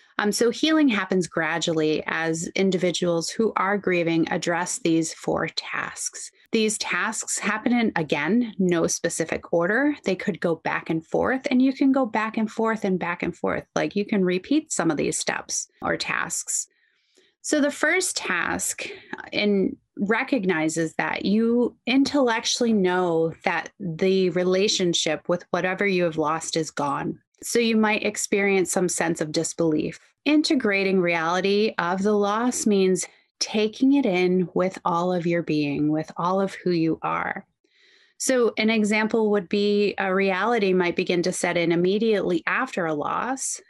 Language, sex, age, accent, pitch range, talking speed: English, female, 30-49, American, 175-220 Hz, 155 wpm